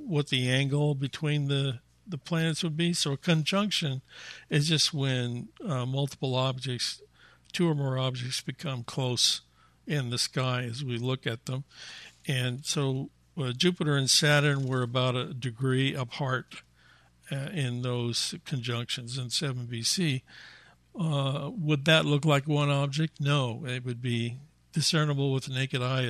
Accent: American